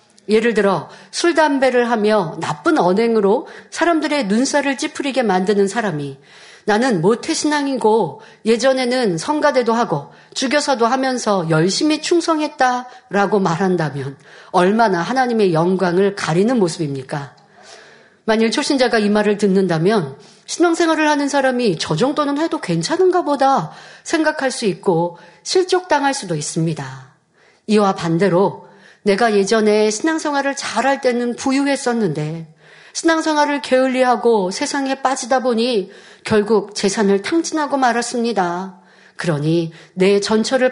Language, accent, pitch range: Korean, native, 180-265 Hz